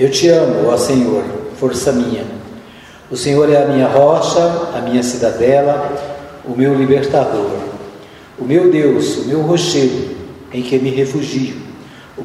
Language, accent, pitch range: Portuguese, Brazilian, 130-165 Hz